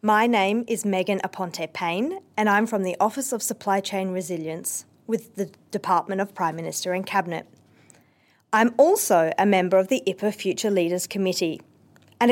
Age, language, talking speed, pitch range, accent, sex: 40-59, English, 160 wpm, 180-235 Hz, Australian, female